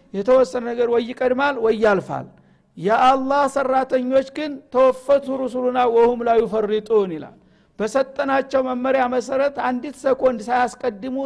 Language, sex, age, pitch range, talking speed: Amharic, male, 60-79, 215-255 Hz, 125 wpm